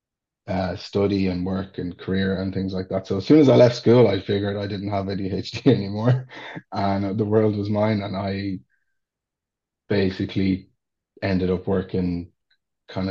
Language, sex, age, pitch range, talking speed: English, male, 30-49, 95-110 Hz, 165 wpm